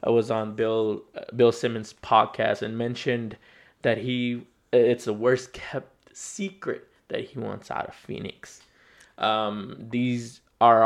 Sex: male